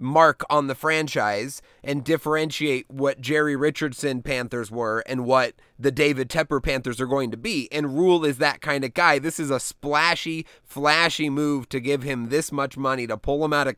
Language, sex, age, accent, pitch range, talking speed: English, male, 30-49, American, 140-175 Hz, 195 wpm